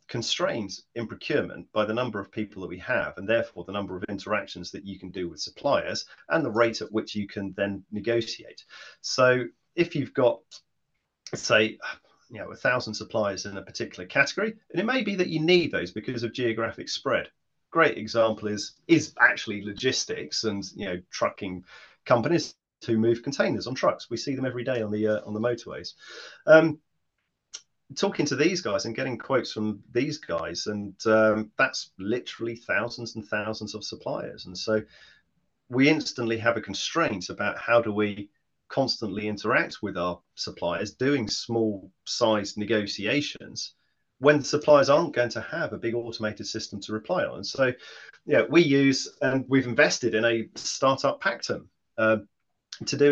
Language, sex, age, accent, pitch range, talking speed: English, male, 30-49, British, 105-130 Hz, 175 wpm